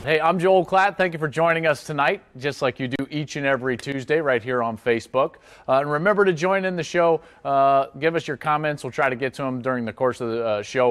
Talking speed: 265 wpm